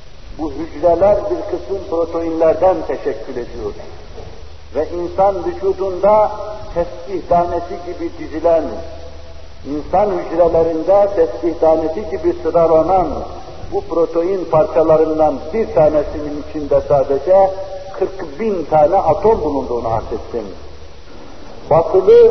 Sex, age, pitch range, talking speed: male, 60-79, 165-225 Hz, 85 wpm